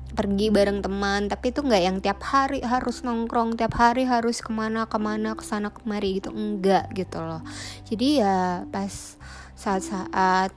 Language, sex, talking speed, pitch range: Indonesian, female, 150 wpm, 185-230 Hz